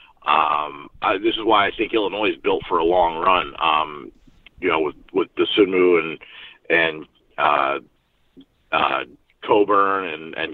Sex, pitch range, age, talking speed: male, 320-410 Hz, 50-69, 160 wpm